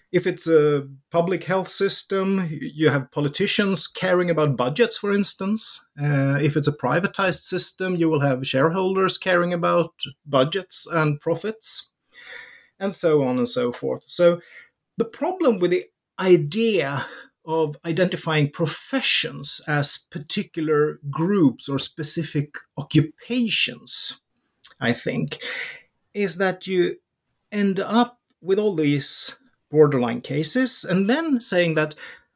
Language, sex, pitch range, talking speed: English, male, 150-220 Hz, 120 wpm